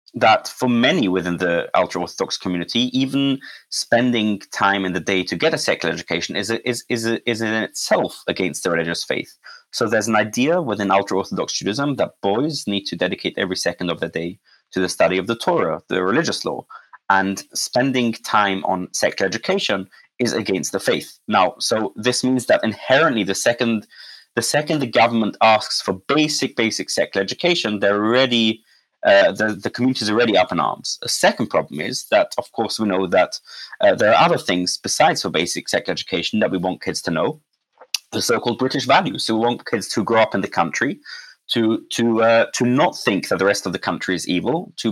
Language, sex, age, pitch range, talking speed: English, male, 20-39, 100-125 Hz, 200 wpm